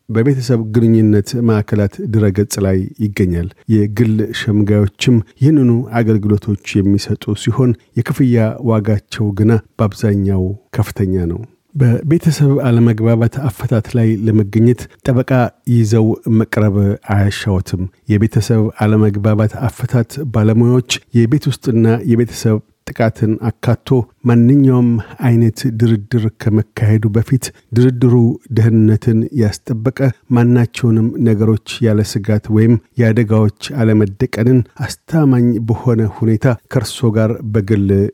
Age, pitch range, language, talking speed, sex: 40-59, 105-120 Hz, Amharic, 90 wpm, male